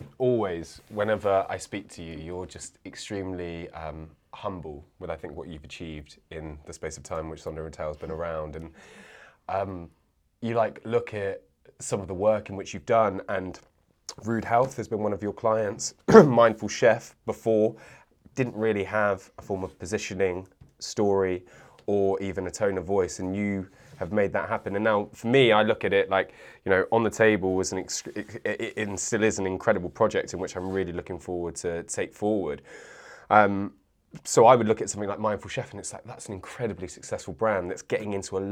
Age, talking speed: 20-39, 205 wpm